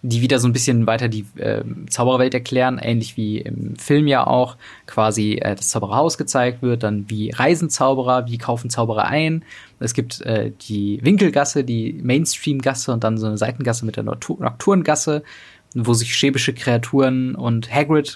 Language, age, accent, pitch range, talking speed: German, 20-39, German, 115-135 Hz, 170 wpm